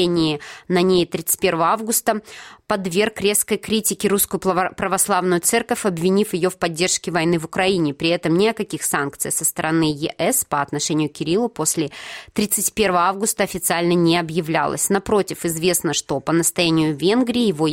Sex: female